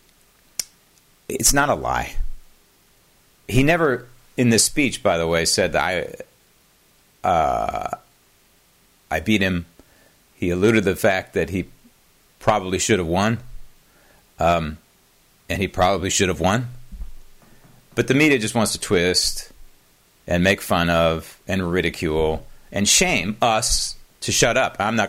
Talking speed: 140 wpm